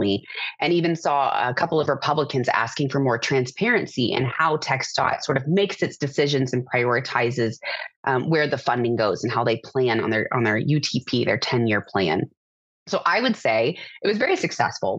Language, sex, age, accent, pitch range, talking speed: English, female, 30-49, American, 130-165 Hz, 185 wpm